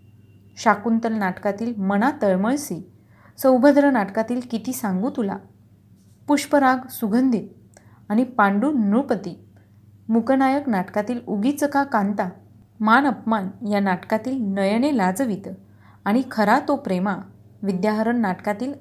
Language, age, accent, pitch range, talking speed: Marathi, 30-49, native, 190-255 Hz, 95 wpm